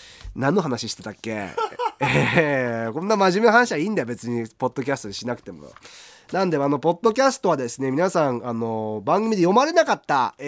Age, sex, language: 30-49, male, Japanese